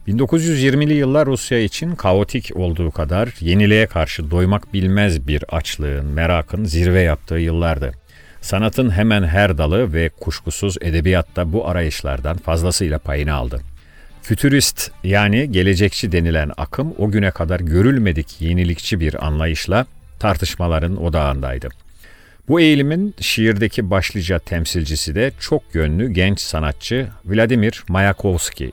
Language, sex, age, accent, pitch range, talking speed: Turkish, male, 50-69, native, 80-110 Hz, 115 wpm